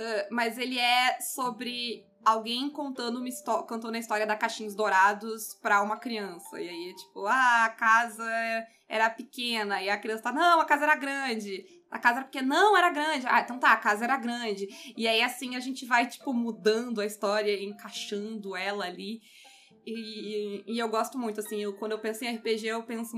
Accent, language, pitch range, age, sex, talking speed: Brazilian, Portuguese, 200-235 Hz, 20-39, female, 195 wpm